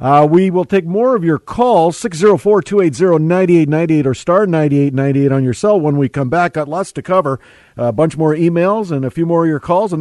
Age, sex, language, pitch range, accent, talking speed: 50-69, male, English, 120-160 Hz, American, 215 wpm